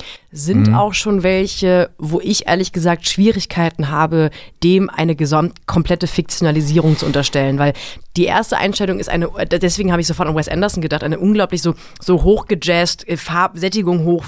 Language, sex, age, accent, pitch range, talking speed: German, female, 30-49, German, 165-200 Hz, 165 wpm